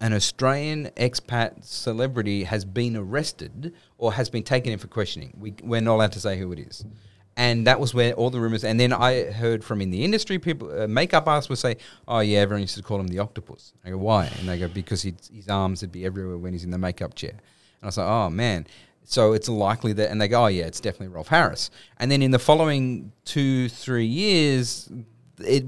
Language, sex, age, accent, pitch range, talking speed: English, male, 30-49, Australian, 105-130 Hz, 230 wpm